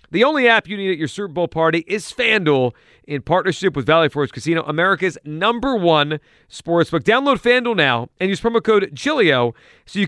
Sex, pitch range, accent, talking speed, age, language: male, 155-200 Hz, American, 190 wpm, 40-59, English